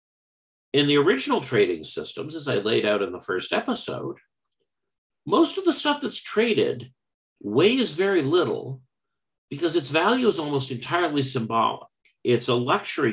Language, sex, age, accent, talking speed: English, male, 50-69, American, 145 wpm